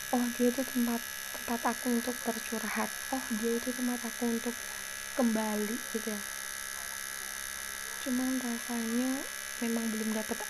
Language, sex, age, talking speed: Malay, female, 20-39, 120 wpm